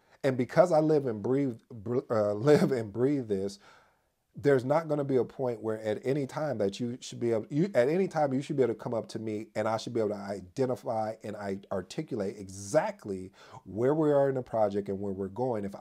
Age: 40-59